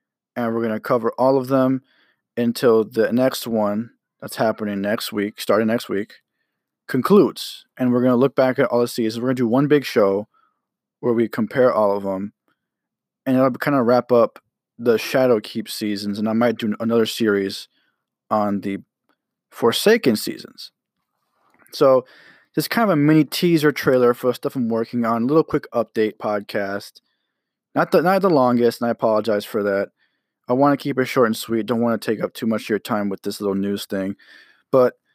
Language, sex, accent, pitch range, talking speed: English, male, American, 110-135 Hz, 195 wpm